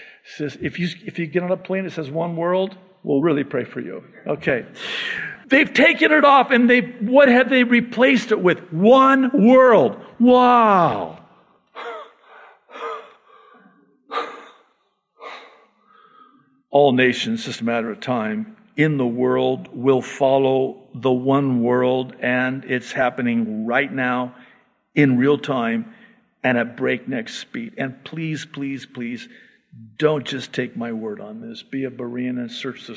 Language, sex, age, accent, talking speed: English, male, 50-69, American, 145 wpm